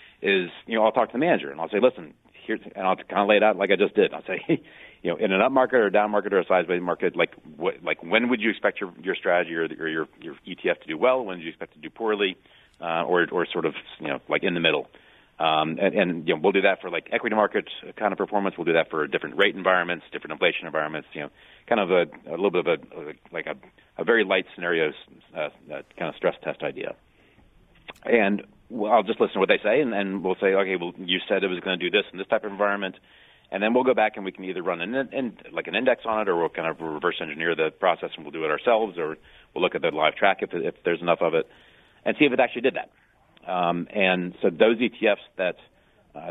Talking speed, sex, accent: 275 wpm, male, American